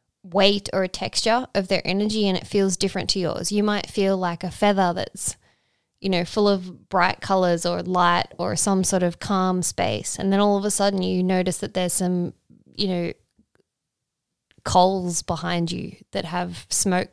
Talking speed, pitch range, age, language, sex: 185 wpm, 180-210 Hz, 10-29, English, female